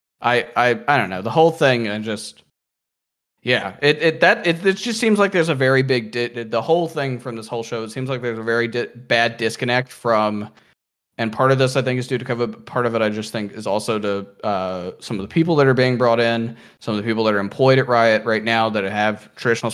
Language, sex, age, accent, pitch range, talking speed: English, male, 20-39, American, 105-125 Hz, 250 wpm